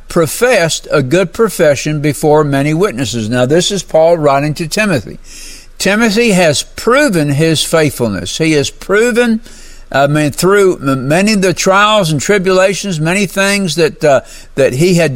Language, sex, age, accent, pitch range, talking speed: English, male, 60-79, American, 145-190 Hz, 150 wpm